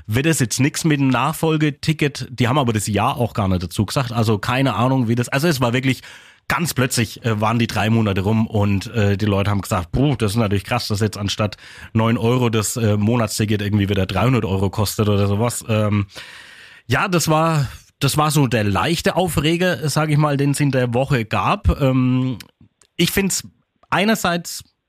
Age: 30-49